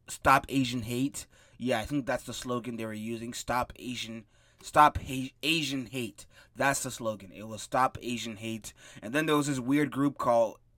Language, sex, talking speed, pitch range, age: English, male, 190 wpm, 115-140 Hz, 20-39